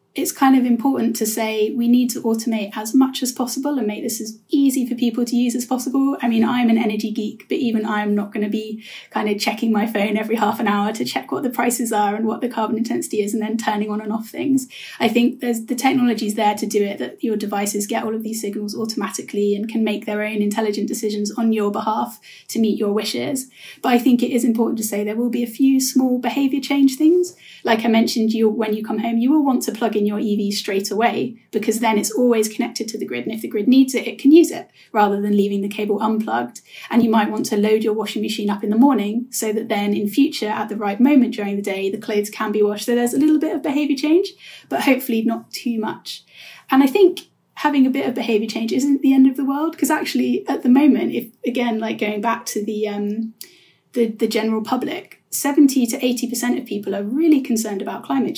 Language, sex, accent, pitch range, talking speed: English, female, British, 215-260 Hz, 250 wpm